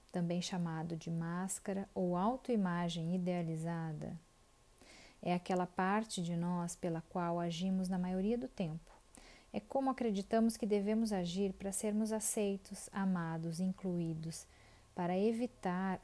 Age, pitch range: 40-59, 175-210 Hz